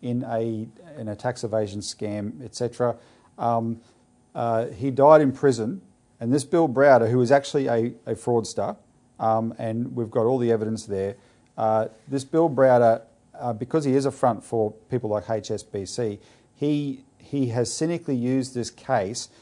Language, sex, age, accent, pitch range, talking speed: English, male, 40-59, Australian, 115-140 Hz, 165 wpm